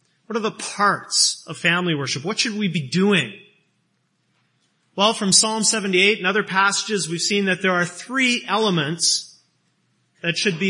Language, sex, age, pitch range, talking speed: English, male, 30-49, 170-220 Hz, 165 wpm